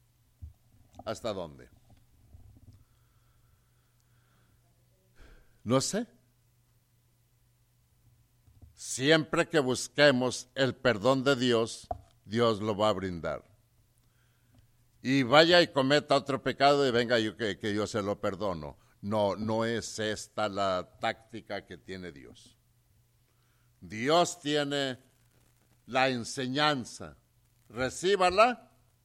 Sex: male